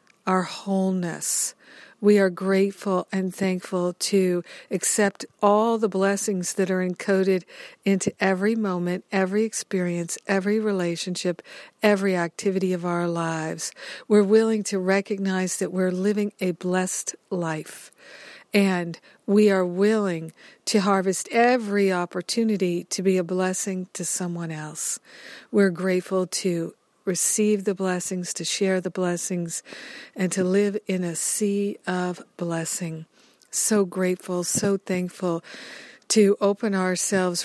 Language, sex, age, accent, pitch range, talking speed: English, female, 60-79, American, 180-200 Hz, 125 wpm